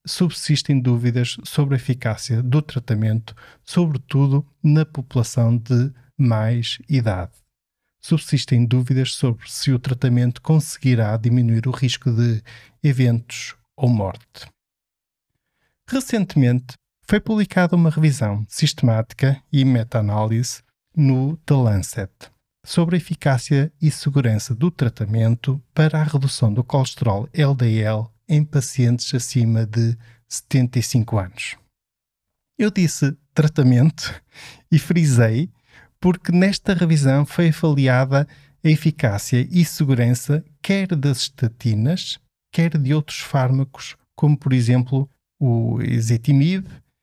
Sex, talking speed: male, 105 wpm